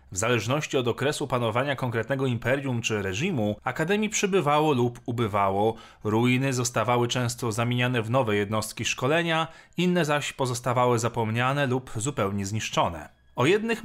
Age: 30-49